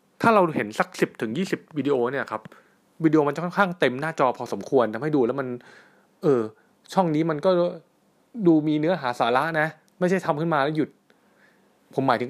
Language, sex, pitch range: Thai, male, 125-170 Hz